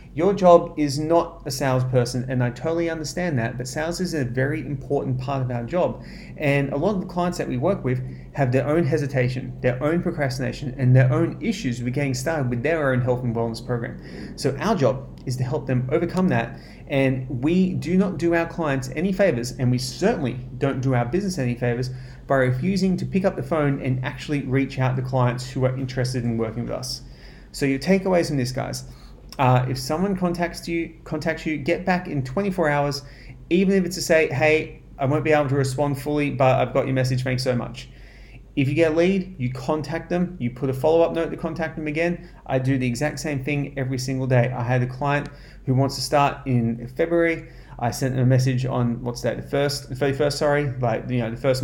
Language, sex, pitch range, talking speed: English, male, 125-160 Hz, 220 wpm